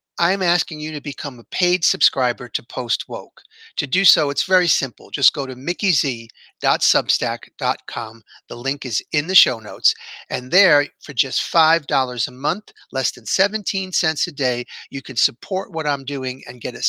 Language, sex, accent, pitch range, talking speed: English, male, American, 135-180 Hz, 180 wpm